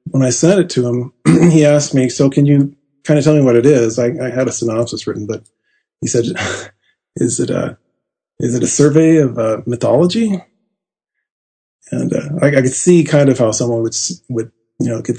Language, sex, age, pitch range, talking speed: English, male, 30-49, 115-135 Hz, 210 wpm